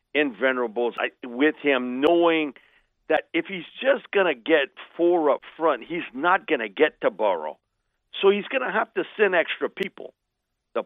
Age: 50-69